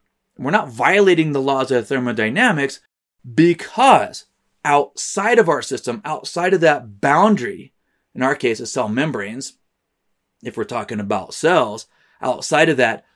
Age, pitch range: 30-49, 120-170 Hz